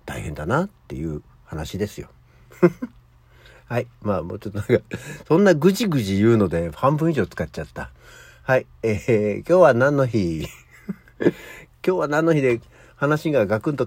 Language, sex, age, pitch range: Japanese, male, 60-79, 100-155 Hz